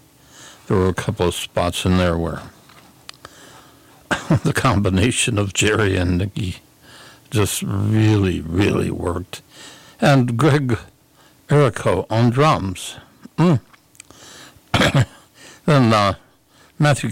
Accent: American